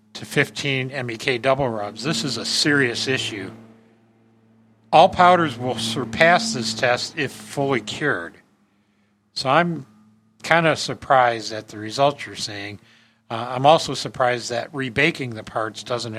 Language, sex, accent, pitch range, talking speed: English, male, American, 110-135 Hz, 140 wpm